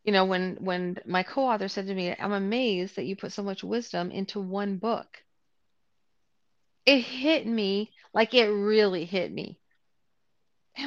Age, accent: 40-59, American